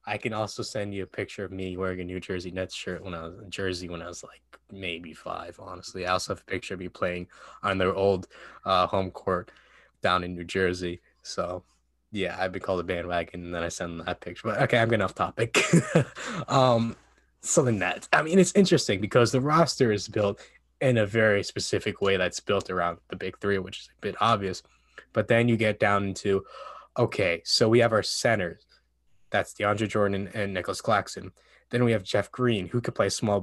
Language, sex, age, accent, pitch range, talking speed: English, male, 10-29, American, 95-120 Hz, 215 wpm